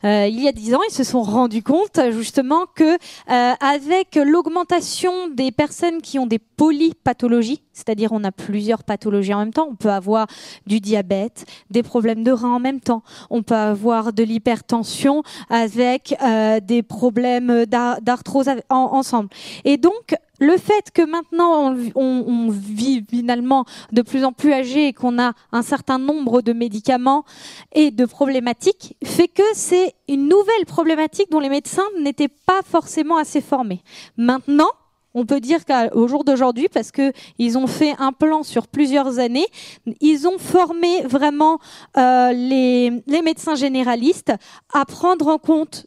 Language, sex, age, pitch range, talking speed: French, female, 20-39, 240-315 Hz, 160 wpm